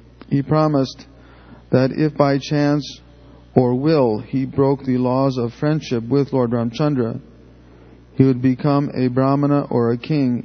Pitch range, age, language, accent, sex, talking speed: 115-140 Hz, 40-59, English, American, male, 145 wpm